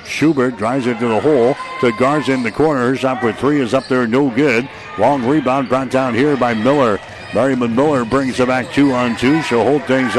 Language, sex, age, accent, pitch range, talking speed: English, male, 60-79, American, 125-135 Hz, 220 wpm